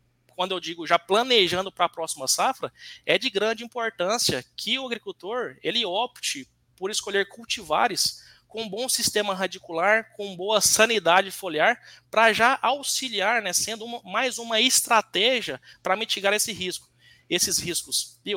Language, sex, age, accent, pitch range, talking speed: Portuguese, male, 20-39, Brazilian, 165-215 Hz, 145 wpm